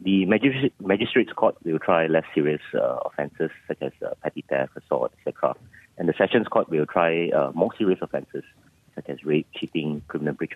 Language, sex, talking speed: English, male, 180 wpm